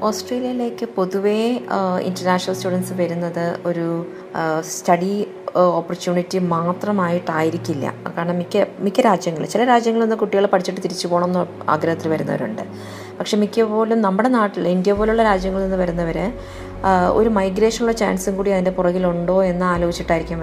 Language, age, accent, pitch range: Malayalam, 20-39, native, 165-200 Hz